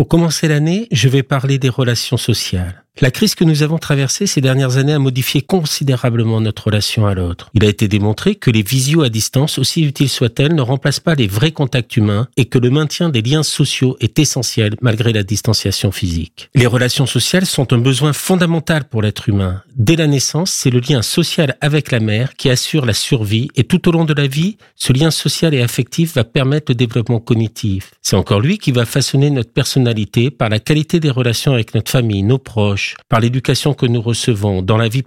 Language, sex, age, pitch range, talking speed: French, male, 50-69, 115-150 Hz, 210 wpm